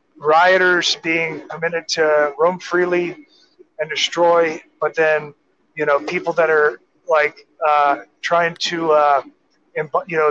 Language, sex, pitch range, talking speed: English, male, 160-230 Hz, 130 wpm